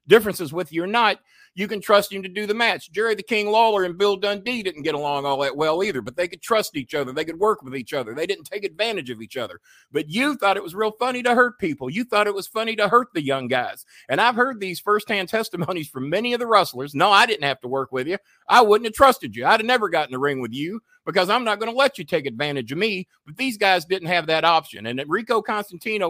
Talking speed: 275 wpm